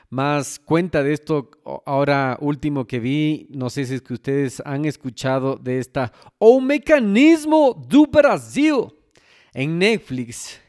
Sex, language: male, Spanish